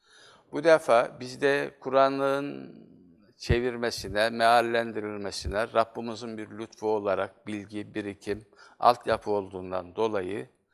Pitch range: 105-125 Hz